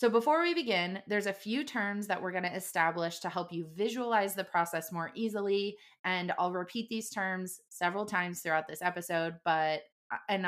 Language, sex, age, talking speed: English, female, 20-39, 190 wpm